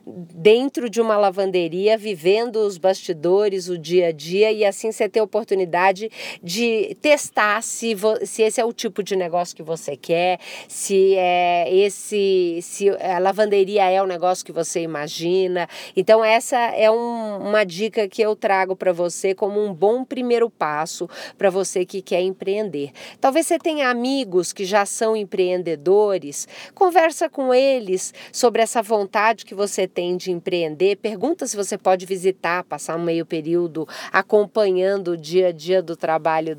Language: Portuguese